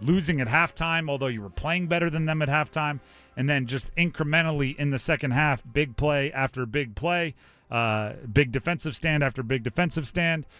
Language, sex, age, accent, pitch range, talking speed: English, male, 30-49, American, 125-165 Hz, 185 wpm